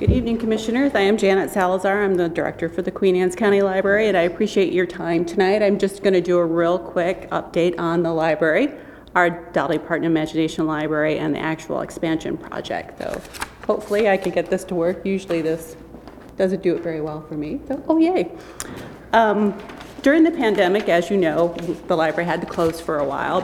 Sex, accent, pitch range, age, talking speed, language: female, American, 170-200 Hz, 30-49, 200 wpm, English